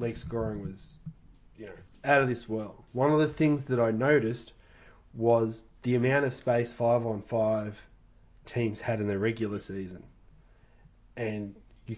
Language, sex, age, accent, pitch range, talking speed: English, male, 20-39, Australian, 110-135 Hz, 150 wpm